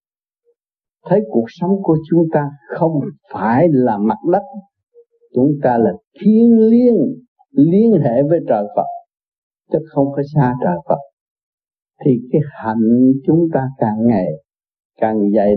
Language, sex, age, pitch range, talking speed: Vietnamese, male, 60-79, 120-195 Hz, 140 wpm